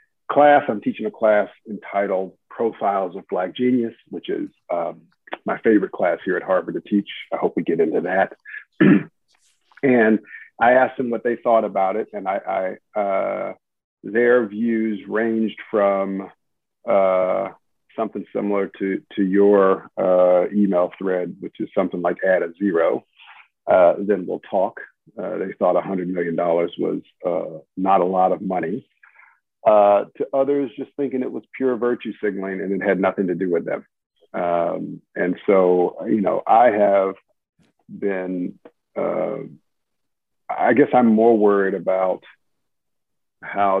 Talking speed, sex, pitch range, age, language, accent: 150 wpm, male, 95-120 Hz, 50-69, English, American